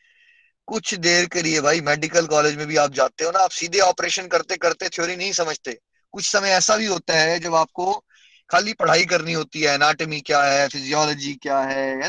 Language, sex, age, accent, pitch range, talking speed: Hindi, male, 20-39, native, 150-225 Hz, 200 wpm